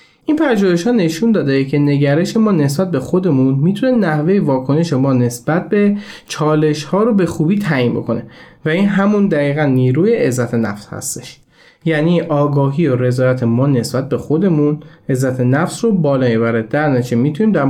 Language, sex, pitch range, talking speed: Persian, male, 125-180 Hz, 165 wpm